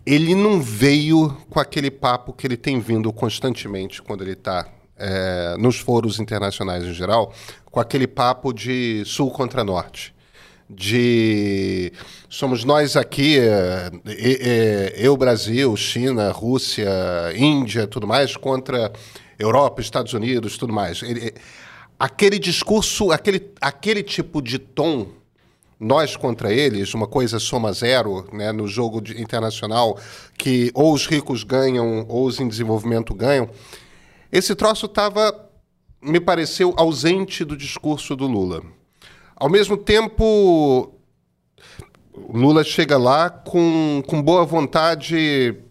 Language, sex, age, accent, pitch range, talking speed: Portuguese, male, 40-59, Brazilian, 110-155 Hz, 130 wpm